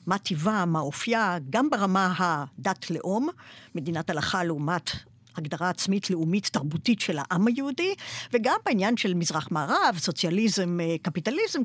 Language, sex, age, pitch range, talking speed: Hebrew, female, 50-69, 180-265 Hz, 125 wpm